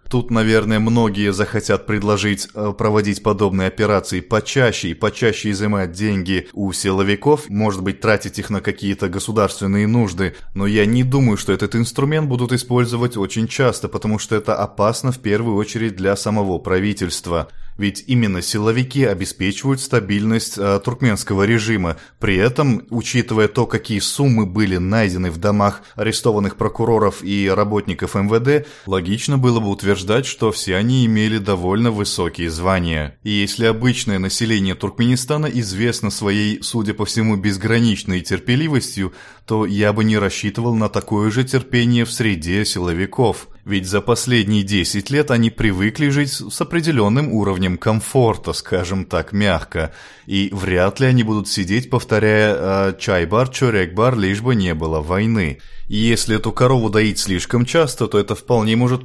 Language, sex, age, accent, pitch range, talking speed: Russian, male, 20-39, native, 100-115 Hz, 145 wpm